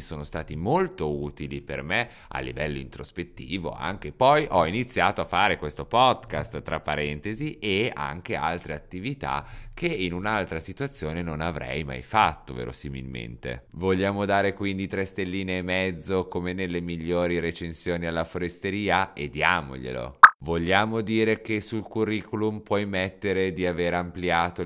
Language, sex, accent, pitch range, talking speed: Italian, male, native, 75-105 Hz, 140 wpm